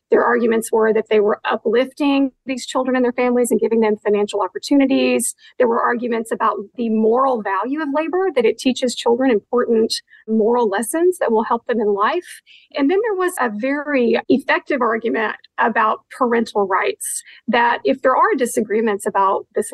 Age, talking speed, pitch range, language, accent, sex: 40-59, 175 wpm, 220-275 Hz, English, American, female